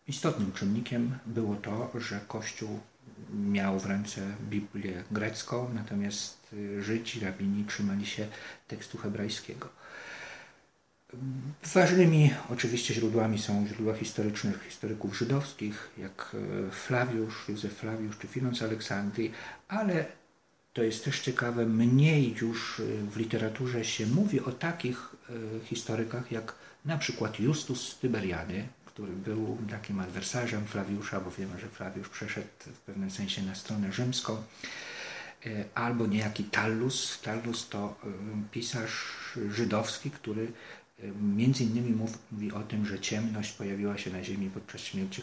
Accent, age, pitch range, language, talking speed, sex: Polish, 50-69, 105-120 Hz, English, 120 wpm, male